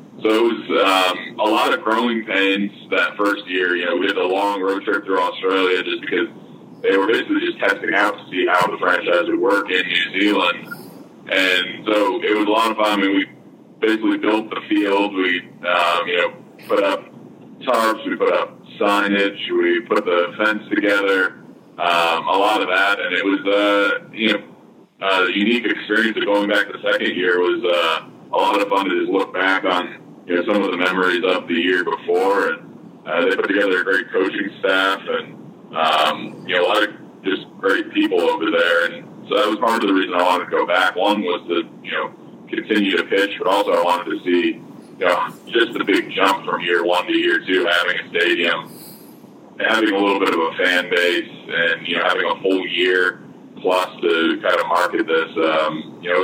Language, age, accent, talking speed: English, 20-39, American, 215 wpm